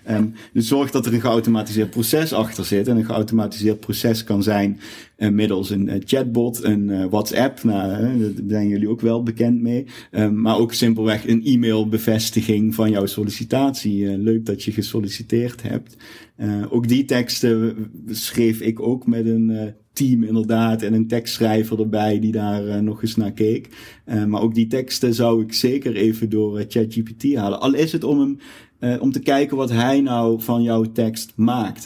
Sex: male